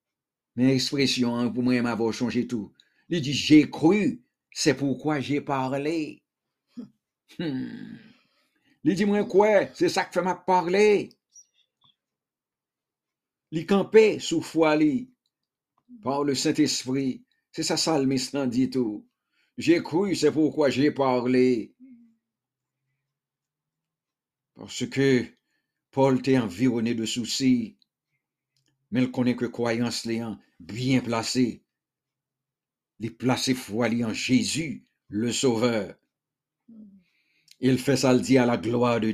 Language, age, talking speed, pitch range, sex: English, 60-79, 115 wpm, 125-180 Hz, male